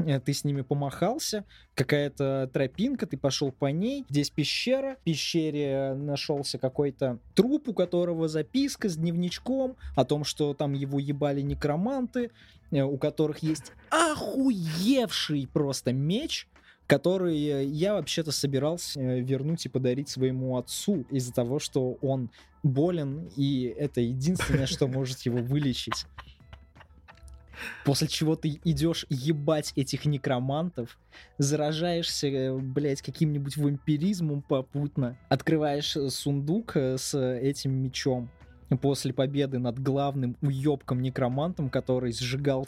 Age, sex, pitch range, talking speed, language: 20-39, male, 135-175 Hz, 115 wpm, Russian